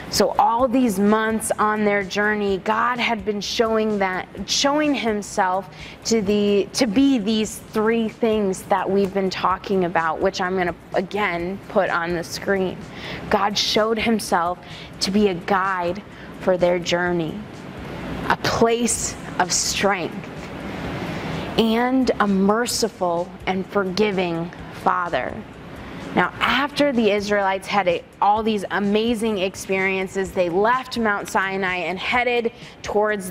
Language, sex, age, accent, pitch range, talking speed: English, female, 20-39, American, 190-240 Hz, 125 wpm